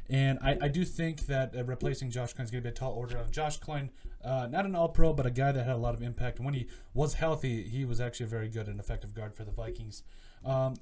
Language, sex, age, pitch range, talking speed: English, male, 20-39, 110-135 Hz, 275 wpm